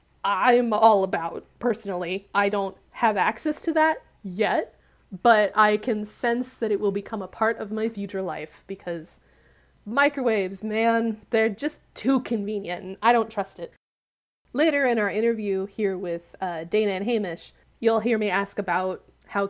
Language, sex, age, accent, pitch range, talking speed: English, female, 20-39, American, 195-240 Hz, 165 wpm